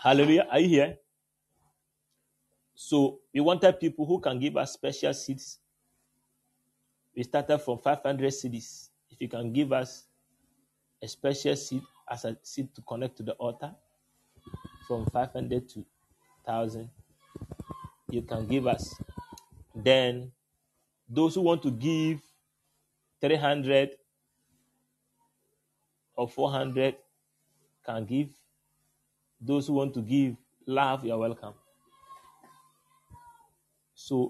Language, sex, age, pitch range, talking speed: English, male, 30-49, 125-150 Hz, 110 wpm